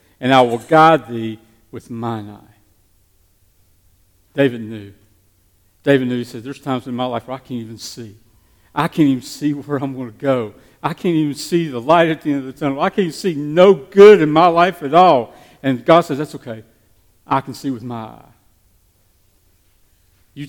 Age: 50-69